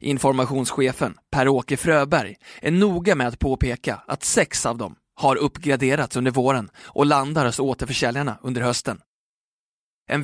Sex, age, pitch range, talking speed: male, 20-39, 130-150 Hz, 135 wpm